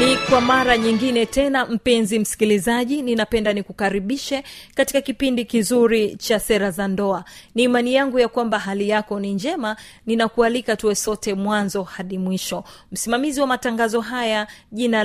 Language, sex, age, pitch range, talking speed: Swahili, female, 30-49, 195-245 Hz, 145 wpm